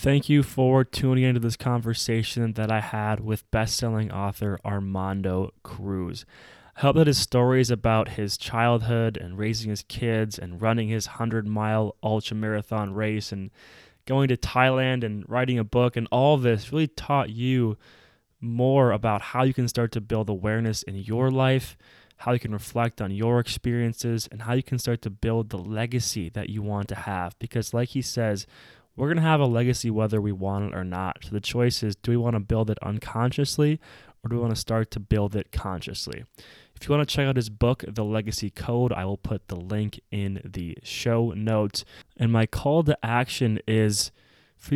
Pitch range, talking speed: 105-125 Hz, 195 wpm